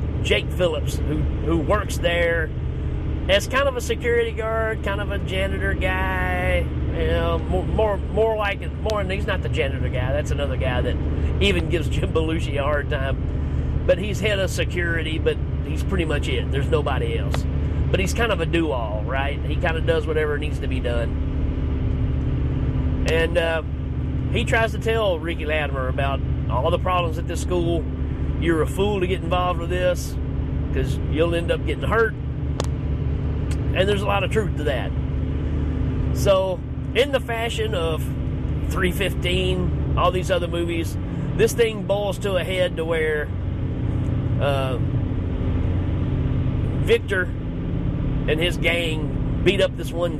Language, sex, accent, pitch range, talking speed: English, male, American, 70-90 Hz, 160 wpm